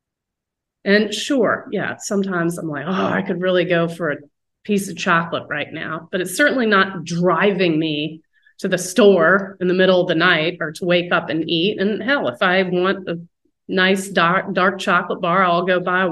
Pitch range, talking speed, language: 175-245 Hz, 195 wpm, English